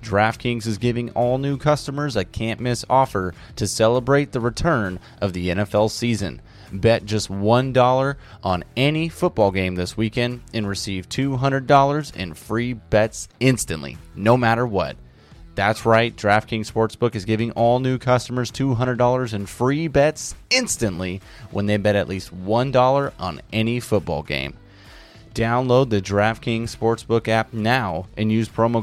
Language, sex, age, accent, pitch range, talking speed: English, male, 30-49, American, 100-125 Hz, 145 wpm